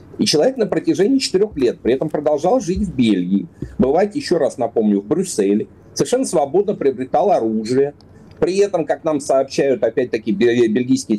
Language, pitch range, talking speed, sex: Russian, 135-200 Hz, 155 wpm, male